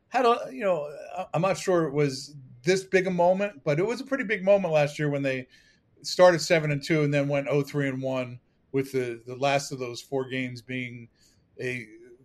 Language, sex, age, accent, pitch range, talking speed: English, male, 40-59, American, 125-150 Hz, 215 wpm